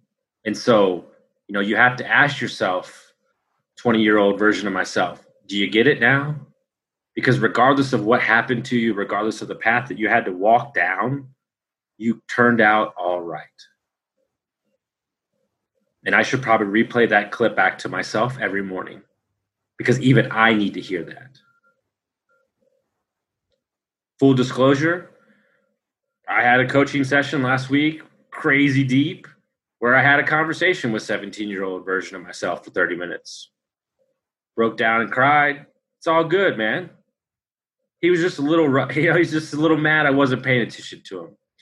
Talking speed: 160 wpm